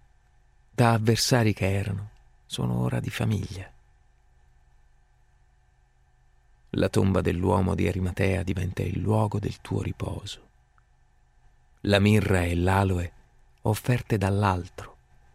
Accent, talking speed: native, 100 wpm